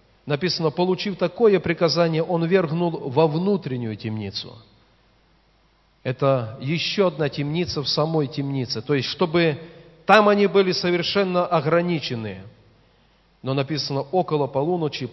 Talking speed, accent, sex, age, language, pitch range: 110 wpm, native, male, 40-59, Russian, 120-165 Hz